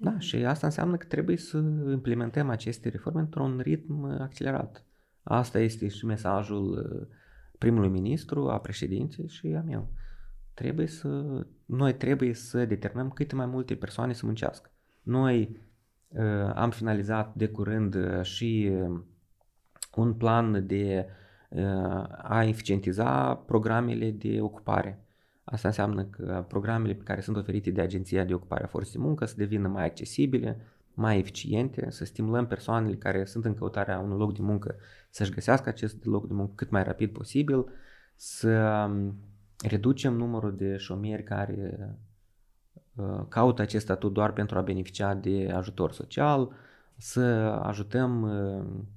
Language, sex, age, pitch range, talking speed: Romanian, male, 20-39, 100-125 Hz, 135 wpm